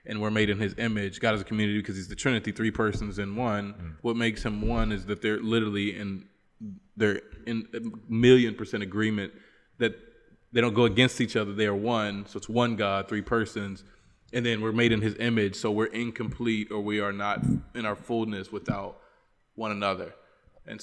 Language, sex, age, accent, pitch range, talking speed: English, male, 20-39, American, 105-120 Hz, 200 wpm